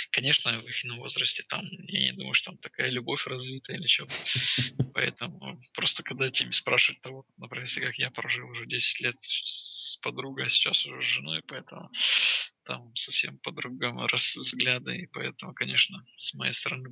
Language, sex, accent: Russian, male, native